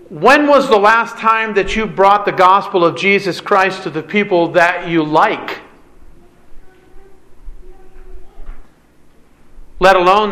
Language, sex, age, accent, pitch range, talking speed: English, male, 40-59, American, 185-225 Hz, 120 wpm